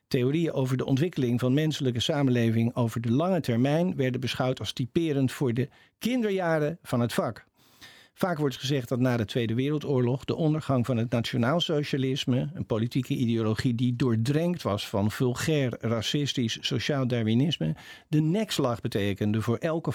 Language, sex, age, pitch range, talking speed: Dutch, male, 50-69, 120-150 Hz, 150 wpm